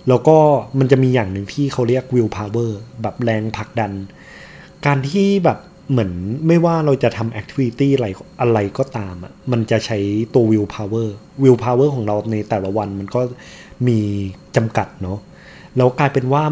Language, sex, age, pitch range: Thai, male, 20-39, 110-140 Hz